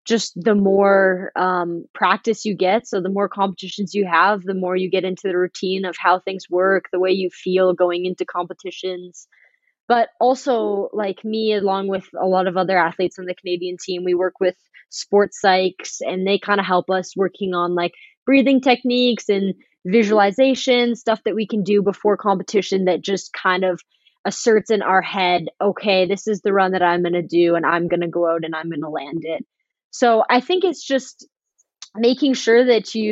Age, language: 20-39, English